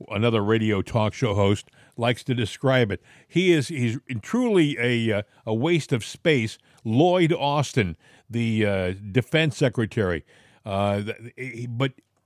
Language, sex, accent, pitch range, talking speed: English, male, American, 110-150 Hz, 130 wpm